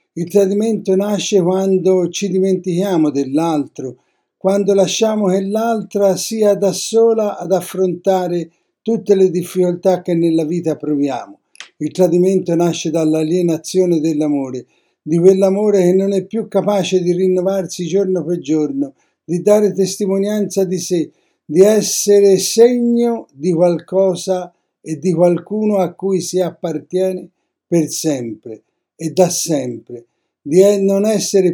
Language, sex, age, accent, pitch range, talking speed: Italian, male, 60-79, native, 160-195 Hz, 125 wpm